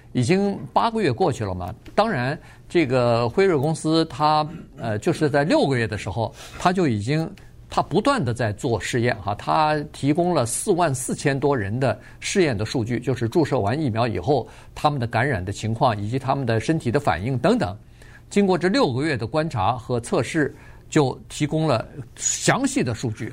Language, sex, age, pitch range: Chinese, male, 50-69, 110-155 Hz